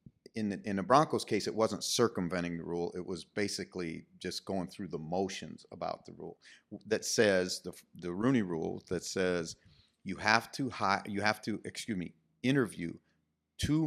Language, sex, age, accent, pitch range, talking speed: English, male, 40-59, American, 90-110 Hz, 175 wpm